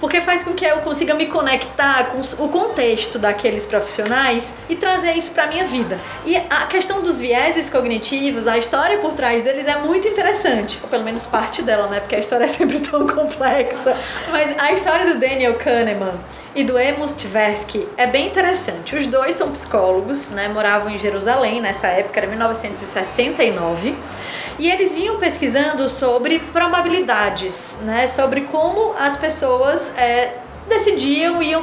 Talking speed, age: 160 wpm, 20-39